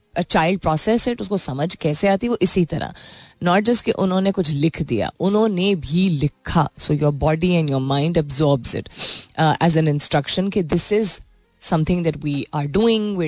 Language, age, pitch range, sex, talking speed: Hindi, 20-39, 150-195 Hz, female, 170 wpm